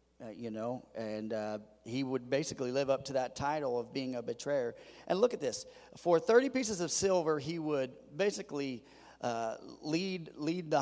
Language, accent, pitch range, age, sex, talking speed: English, American, 125-165 Hz, 40-59, male, 185 wpm